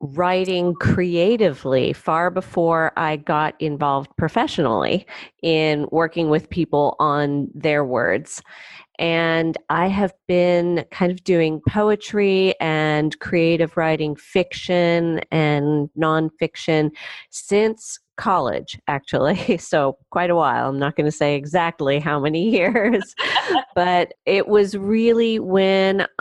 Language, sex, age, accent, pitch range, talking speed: English, female, 30-49, American, 150-180 Hz, 115 wpm